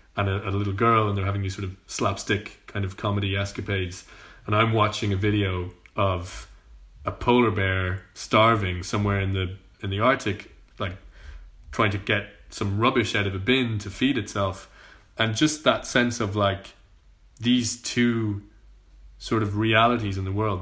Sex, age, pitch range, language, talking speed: male, 20-39, 95-115 Hz, English, 170 wpm